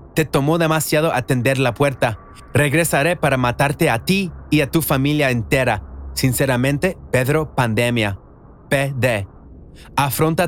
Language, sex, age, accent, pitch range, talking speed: Spanish, male, 30-49, Mexican, 120-155 Hz, 120 wpm